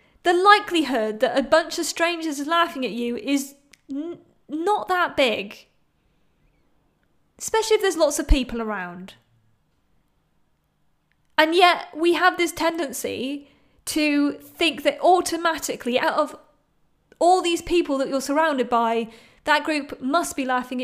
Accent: British